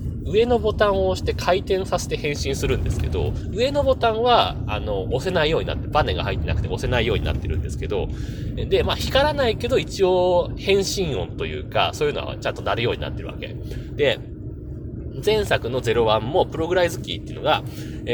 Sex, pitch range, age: male, 120-195 Hz, 20-39